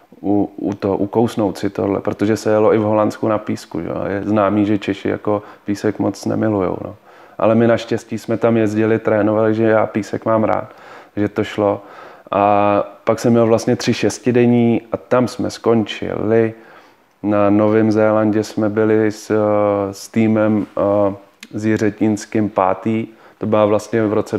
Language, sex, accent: Czech, male, native